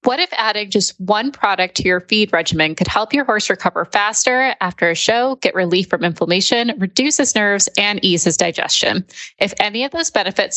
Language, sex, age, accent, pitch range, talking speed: English, female, 20-39, American, 185-240 Hz, 200 wpm